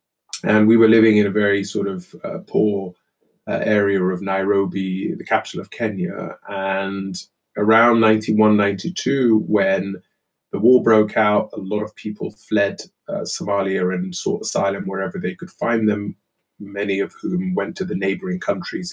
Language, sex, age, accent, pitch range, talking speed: English, male, 20-39, British, 95-115 Hz, 160 wpm